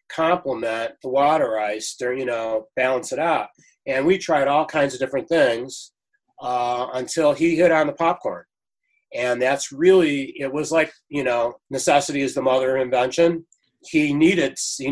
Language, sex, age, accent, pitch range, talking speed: English, male, 30-49, American, 130-175 Hz, 170 wpm